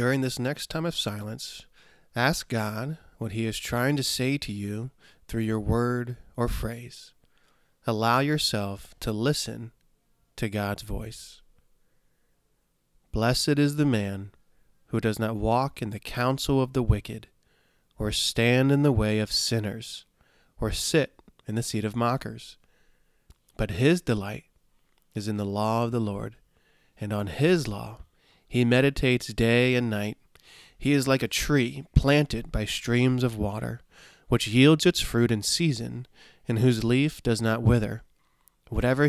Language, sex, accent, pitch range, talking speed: English, male, American, 110-135 Hz, 150 wpm